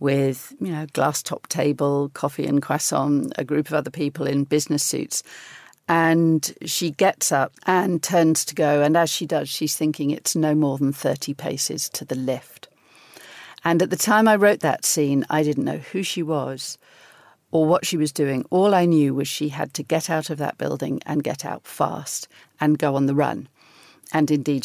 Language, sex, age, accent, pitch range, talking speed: English, female, 50-69, British, 145-165 Hz, 200 wpm